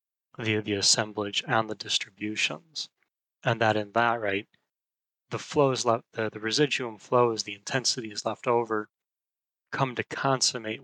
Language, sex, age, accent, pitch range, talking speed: English, male, 30-49, American, 110-125 Hz, 145 wpm